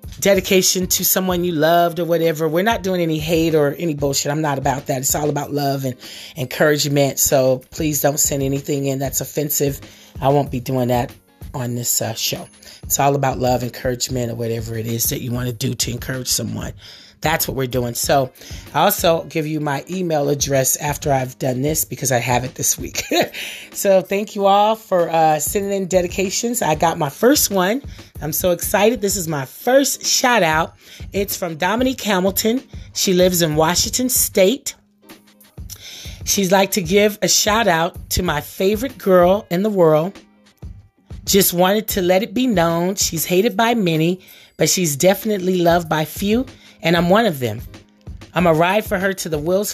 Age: 30-49